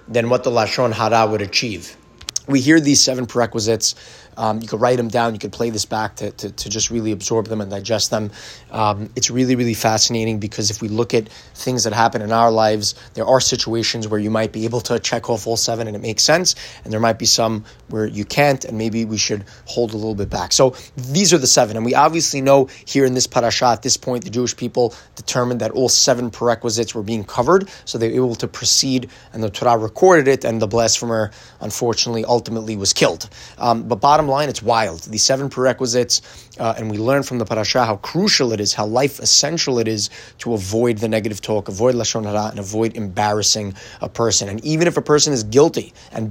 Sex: male